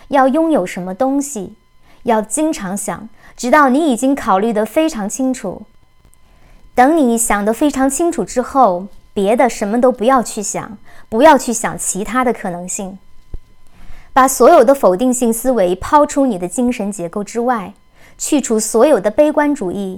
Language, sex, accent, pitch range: Chinese, male, native, 205-275 Hz